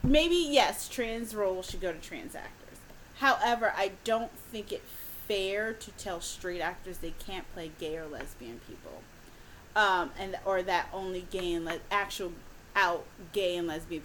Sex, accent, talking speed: female, American, 165 wpm